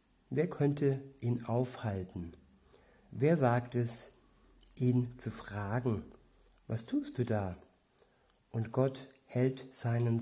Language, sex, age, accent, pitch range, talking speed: German, male, 60-79, German, 115-130 Hz, 105 wpm